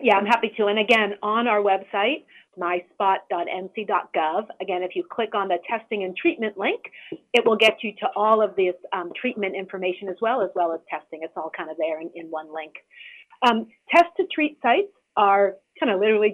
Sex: female